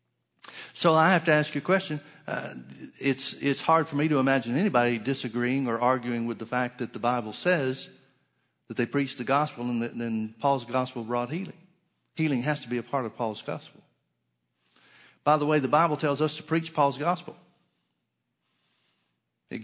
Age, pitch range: 50-69, 120-155 Hz